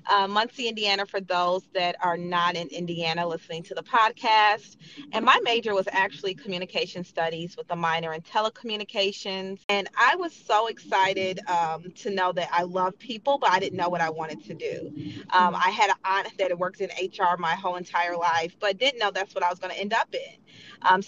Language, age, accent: English, 30-49, American